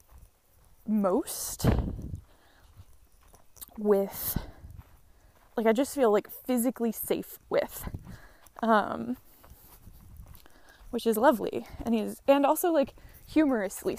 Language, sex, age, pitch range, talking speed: English, female, 20-39, 195-240 Hz, 85 wpm